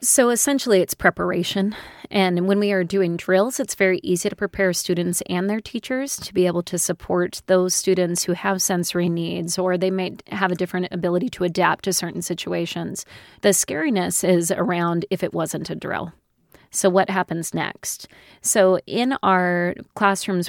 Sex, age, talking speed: female, 30-49, 175 wpm